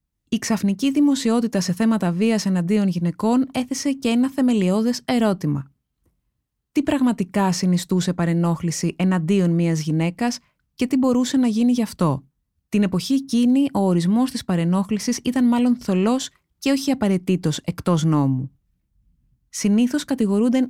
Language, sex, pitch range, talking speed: Greek, female, 175-235 Hz, 130 wpm